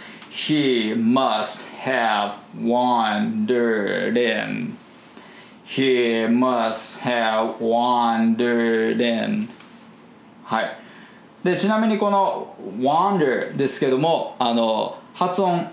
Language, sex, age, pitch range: Japanese, male, 20-39, 120-175 Hz